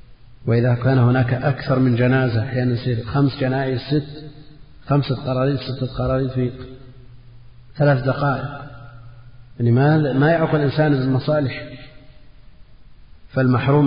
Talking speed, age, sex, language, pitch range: 110 wpm, 40-59, male, Arabic, 120-135 Hz